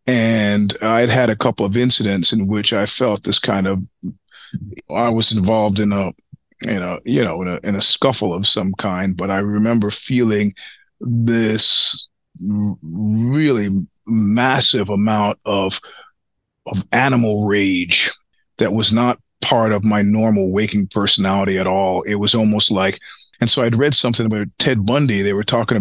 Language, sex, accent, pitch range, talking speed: English, male, American, 100-120 Hz, 165 wpm